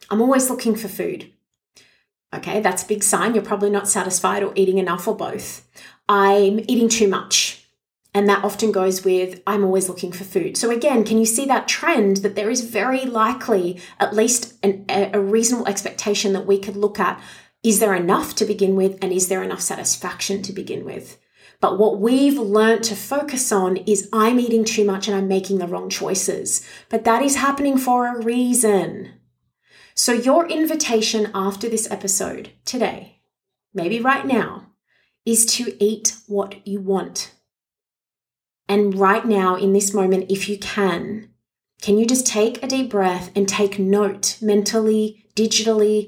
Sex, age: female, 30-49